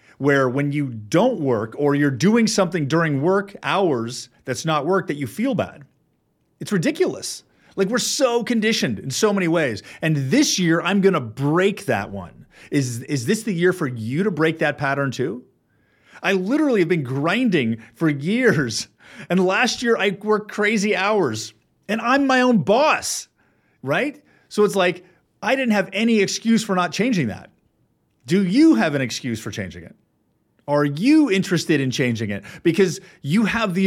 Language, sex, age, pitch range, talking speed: English, male, 30-49, 140-210 Hz, 175 wpm